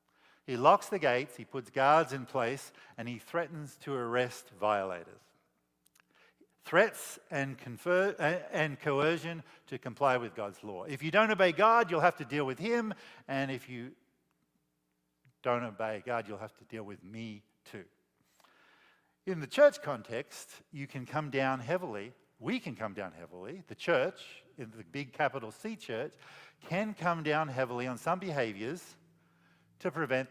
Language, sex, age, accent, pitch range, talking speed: English, male, 50-69, Australian, 120-155 Hz, 155 wpm